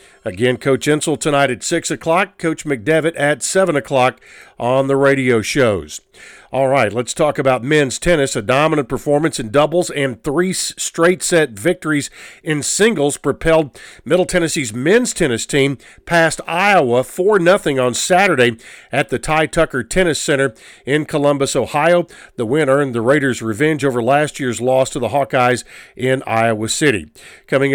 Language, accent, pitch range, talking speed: English, American, 125-160 Hz, 155 wpm